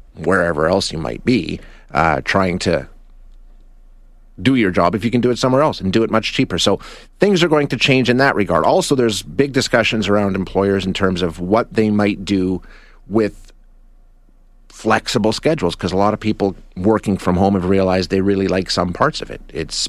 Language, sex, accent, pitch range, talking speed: English, male, American, 90-115 Hz, 200 wpm